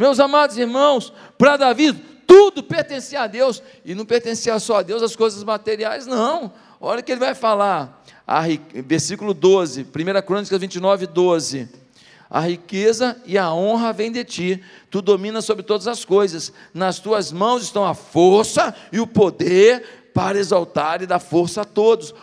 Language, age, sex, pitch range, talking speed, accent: Portuguese, 50-69, male, 175-240 Hz, 165 wpm, Brazilian